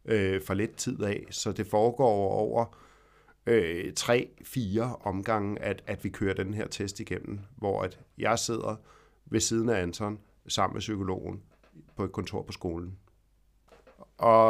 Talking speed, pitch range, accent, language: 155 wpm, 95-115 Hz, native, Danish